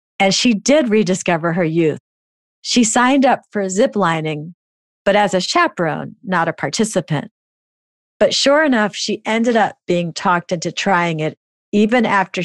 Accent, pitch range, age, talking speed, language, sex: American, 165-210 Hz, 40-59, 155 wpm, English, female